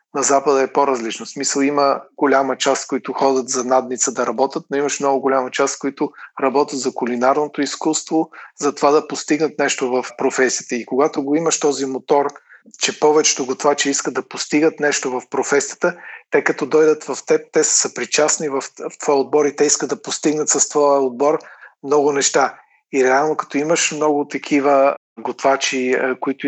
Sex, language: male, Bulgarian